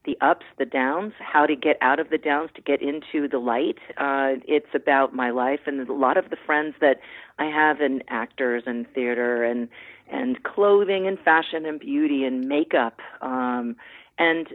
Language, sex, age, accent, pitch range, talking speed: English, female, 40-59, American, 130-165 Hz, 185 wpm